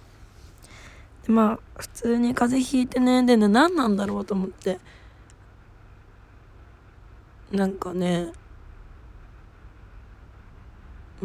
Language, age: Japanese, 20-39